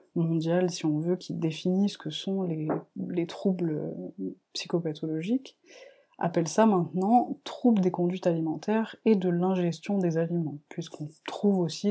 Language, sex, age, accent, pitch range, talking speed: French, female, 20-39, French, 170-205 Hz, 150 wpm